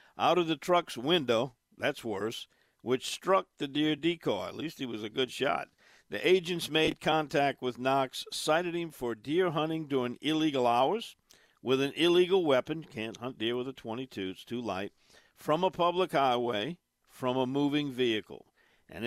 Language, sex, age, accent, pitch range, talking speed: English, male, 50-69, American, 115-155 Hz, 175 wpm